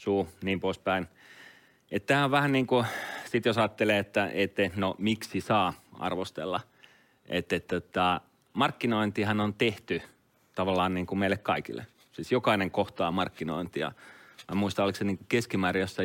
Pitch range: 90-115 Hz